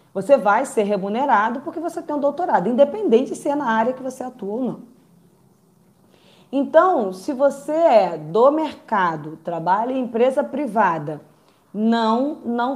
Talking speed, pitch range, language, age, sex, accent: 145 wpm, 195-255 Hz, Portuguese, 20-39, female, Brazilian